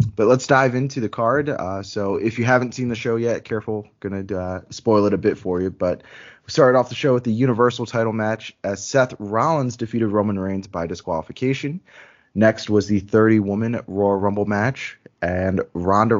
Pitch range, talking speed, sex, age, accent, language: 95-120 Hz, 195 wpm, male, 20-39, American, English